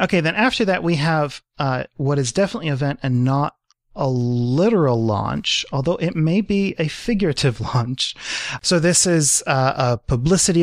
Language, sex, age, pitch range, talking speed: English, male, 30-49, 120-150 Hz, 170 wpm